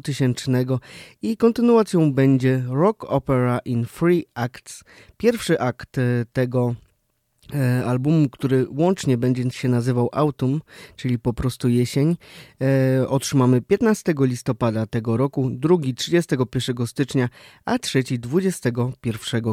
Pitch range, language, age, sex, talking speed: 120-145 Hz, Polish, 20-39, male, 100 wpm